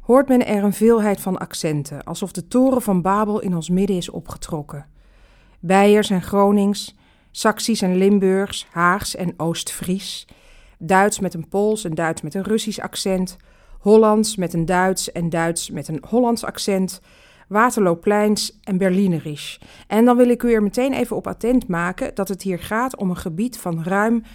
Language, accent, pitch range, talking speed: Dutch, Dutch, 175-215 Hz, 170 wpm